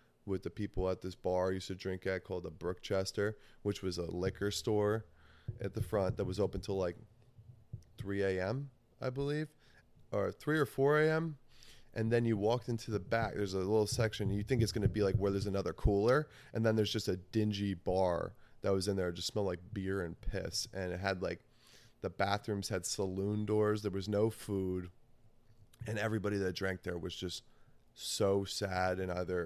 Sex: male